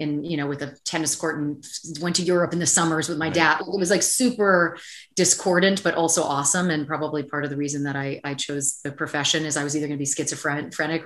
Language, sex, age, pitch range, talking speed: English, female, 30-49, 145-170 Hz, 245 wpm